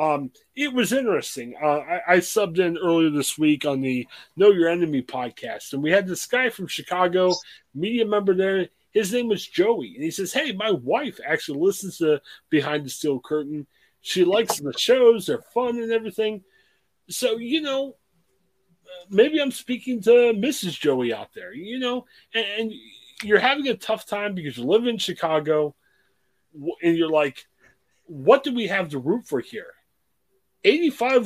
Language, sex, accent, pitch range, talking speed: English, male, American, 160-250 Hz, 175 wpm